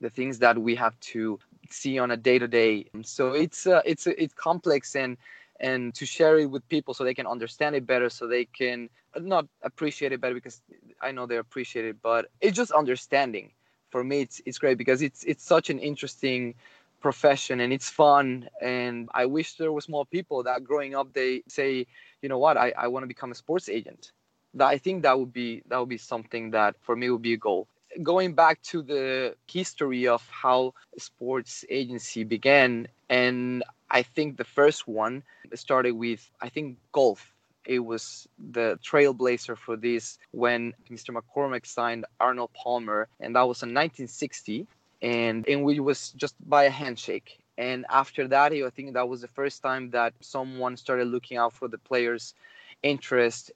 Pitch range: 120-140 Hz